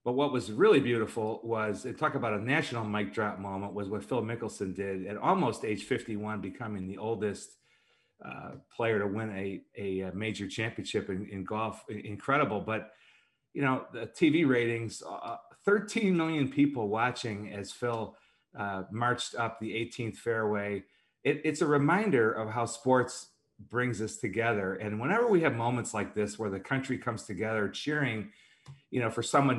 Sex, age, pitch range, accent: male, 40-59, 105-130 Hz, American